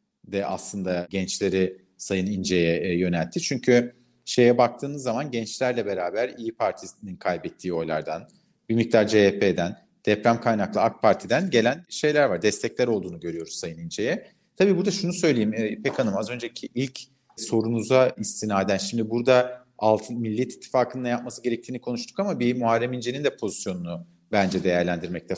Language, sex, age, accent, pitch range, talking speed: Turkish, male, 40-59, native, 105-130 Hz, 145 wpm